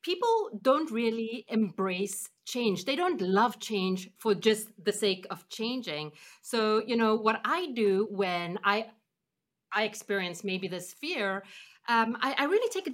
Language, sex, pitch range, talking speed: English, female, 200-270 Hz, 160 wpm